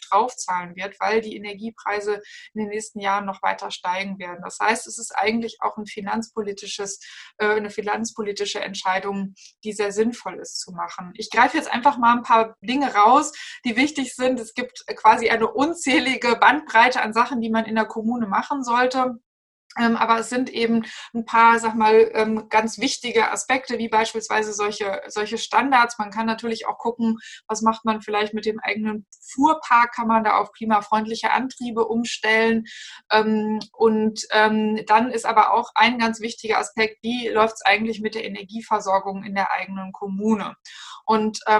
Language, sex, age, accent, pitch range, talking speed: German, female, 20-39, German, 215-240 Hz, 165 wpm